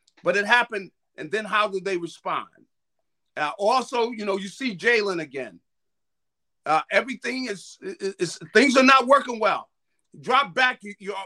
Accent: American